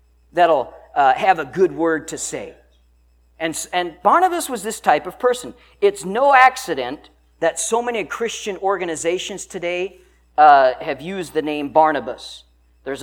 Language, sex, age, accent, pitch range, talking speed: English, male, 50-69, American, 120-185 Hz, 145 wpm